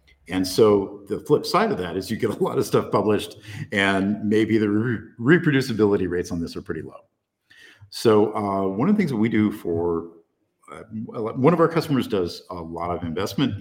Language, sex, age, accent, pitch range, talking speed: English, male, 50-69, American, 90-120 Hz, 200 wpm